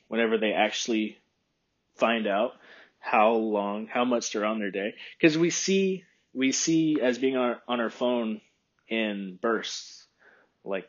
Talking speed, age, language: 150 wpm, 20-39, English